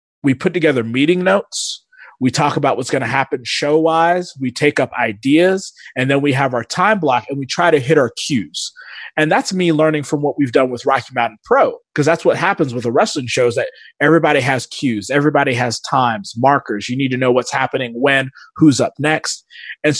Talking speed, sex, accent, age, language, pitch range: 210 wpm, male, American, 20-39, English, 130-165 Hz